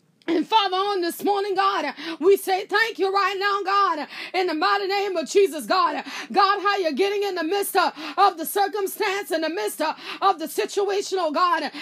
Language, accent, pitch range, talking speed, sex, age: English, American, 330-410 Hz, 190 wpm, female, 30-49